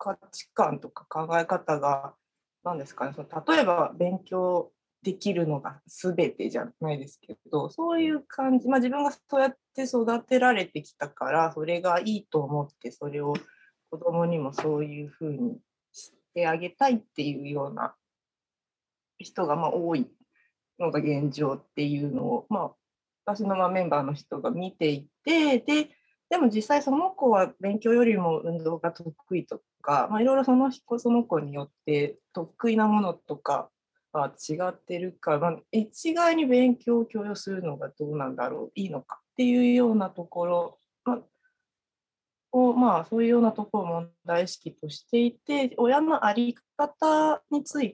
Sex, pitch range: female, 160-245 Hz